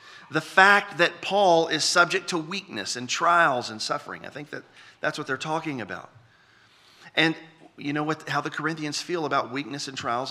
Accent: American